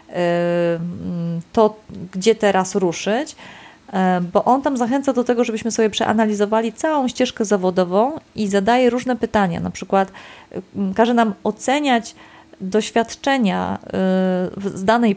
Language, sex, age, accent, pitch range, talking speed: Polish, female, 30-49, native, 185-240 Hz, 110 wpm